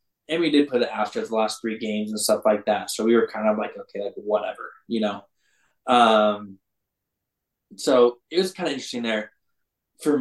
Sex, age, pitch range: male, 10-29, 115-140 Hz